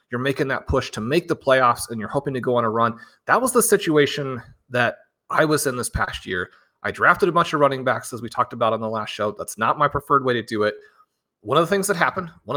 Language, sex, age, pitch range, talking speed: English, male, 30-49, 115-155 Hz, 270 wpm